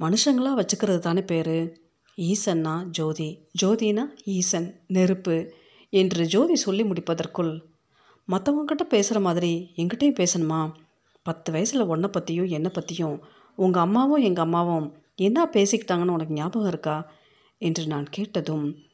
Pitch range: 165-205 Hz